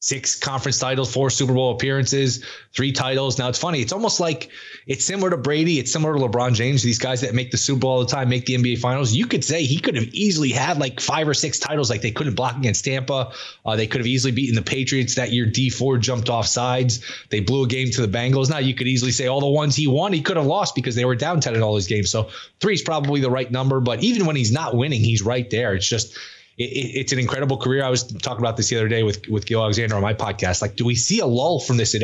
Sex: male